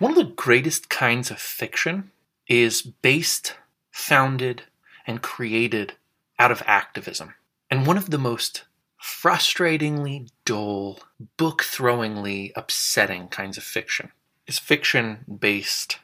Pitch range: 100-130 Hz